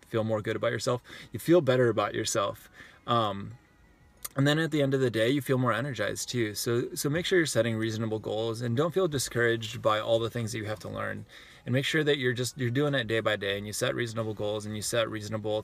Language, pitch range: English, 110-120 Hz